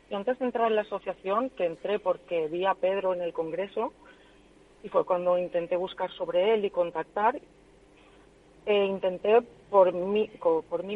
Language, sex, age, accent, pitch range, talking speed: Spanish, female, 40-59, Spanish, 180-230 Hz, 160 wpm